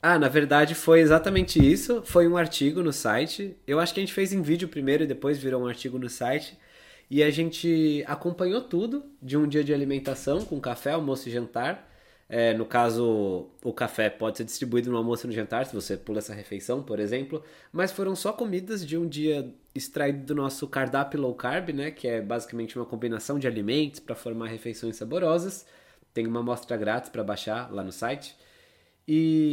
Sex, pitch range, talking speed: male, 120-170 Hz, 195 wpm